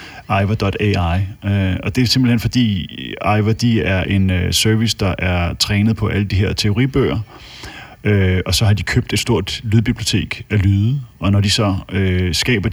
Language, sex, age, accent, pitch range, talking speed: Danish, male, 30-49, native, 95-110 Hz, 160 wpm